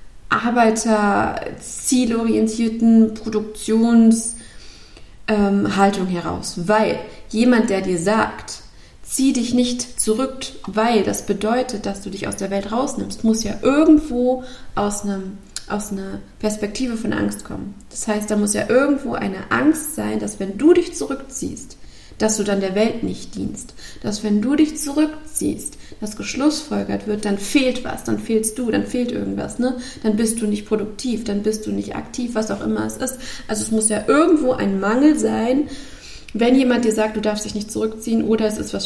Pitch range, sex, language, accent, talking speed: 205-245 Hz, female, German, German, 170 wpm